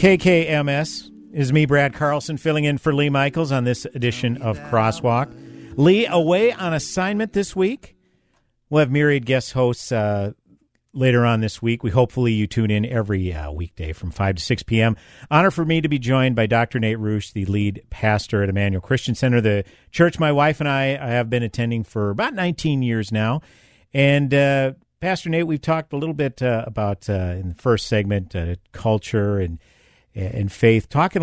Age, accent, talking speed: 50-69, American, 185 wpm